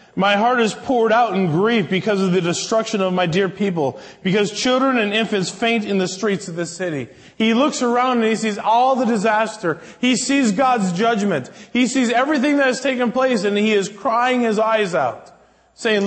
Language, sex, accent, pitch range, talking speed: English, male, American, 200-240 Hz, 200 wpm